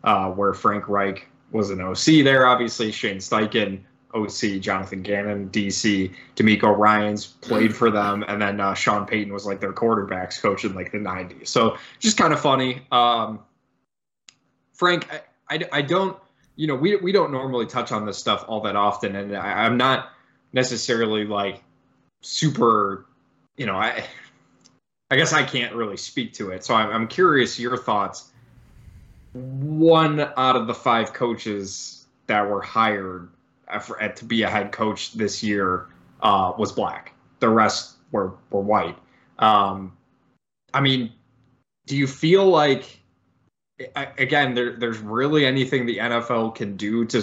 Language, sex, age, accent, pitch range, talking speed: English, male, 20-39, American, 100-130 Hz, 160 wpm